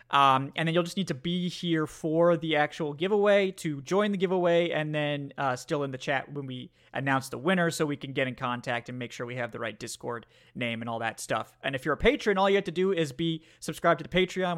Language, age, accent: English, 30-49, American